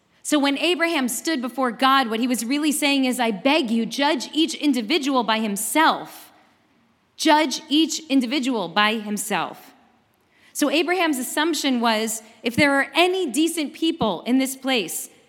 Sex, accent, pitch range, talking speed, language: female, American, 230-290 Hz, 150 wpm, English